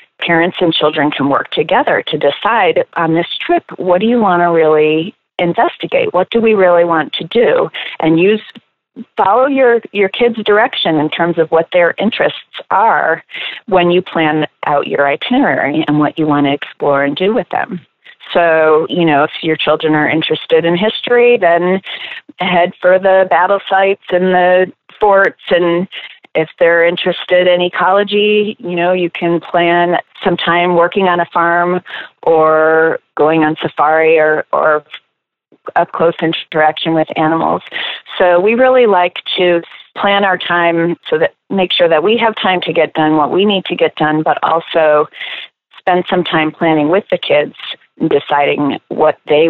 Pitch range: 160-195 Hz